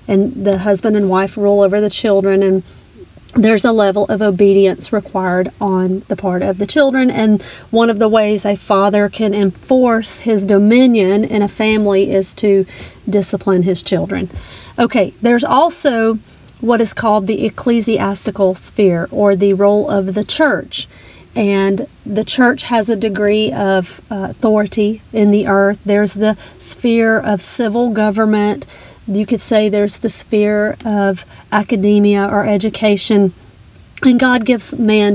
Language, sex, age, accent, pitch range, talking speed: English, female, 40-59, American, 200-230 Hz, 150 wpm